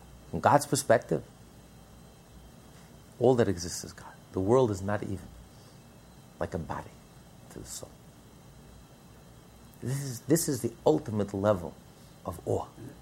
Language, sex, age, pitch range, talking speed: English, male, 50-69, 95-120 Hz, 130 wpm